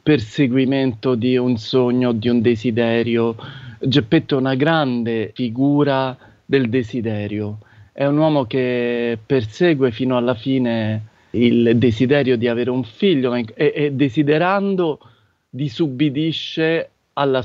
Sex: male